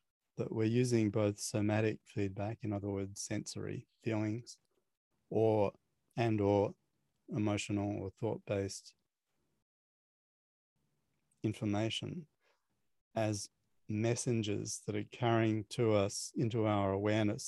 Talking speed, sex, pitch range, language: 95 wpm, male, 100-115 Hz, English